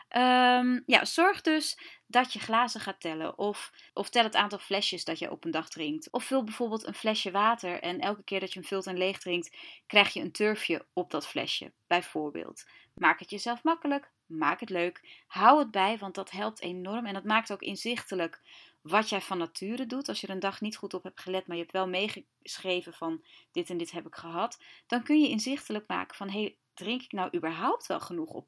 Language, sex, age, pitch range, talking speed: Dutch, female, 30-49, 180-240 Hz, 215 wpm